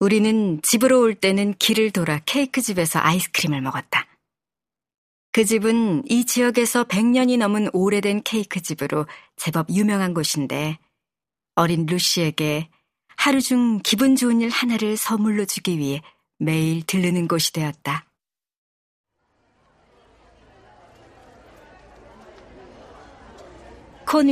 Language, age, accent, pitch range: Korean, 40-59, native, 160-230 Hz